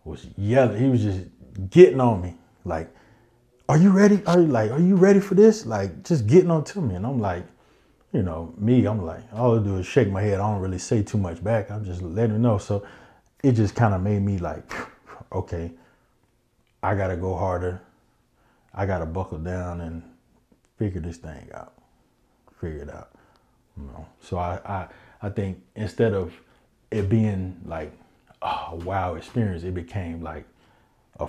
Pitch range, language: 90-115 Hz, English